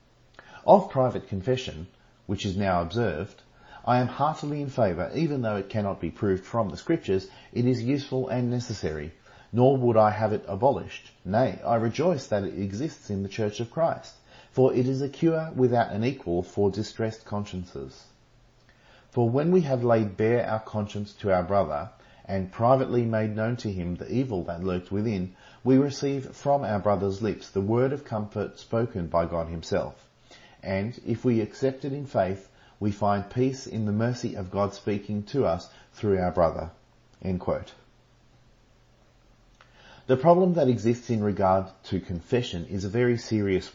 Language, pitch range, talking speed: English, 100-125 Hz, 170 wpm